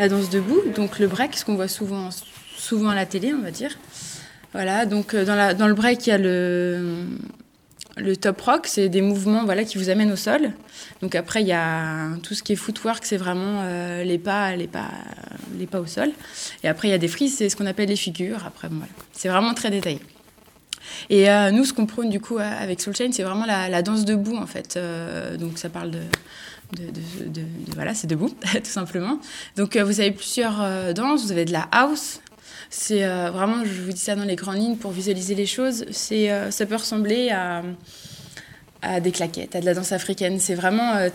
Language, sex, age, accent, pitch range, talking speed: French, female, 20-39, French, 180-220 Hz, 230 wpm